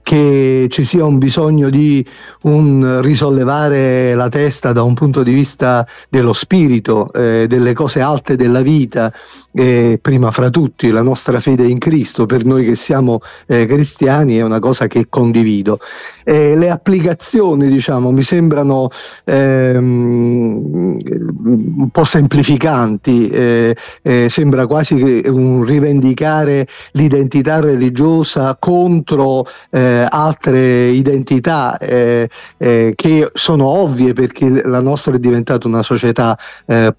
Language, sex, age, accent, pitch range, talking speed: Italian, male, 40-59, native, 125-150 Hz, 130 wpm